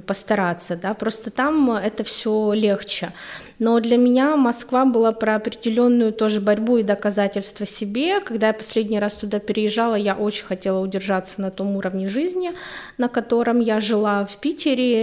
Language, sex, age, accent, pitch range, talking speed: Russian, female, 20-39, native, 195-235 Hz, 155 wpm